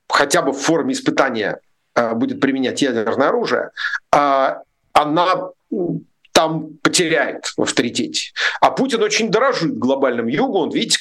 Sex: male